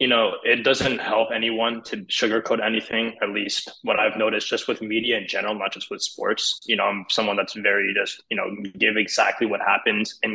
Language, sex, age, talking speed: English, male, 20-39, 215 wpm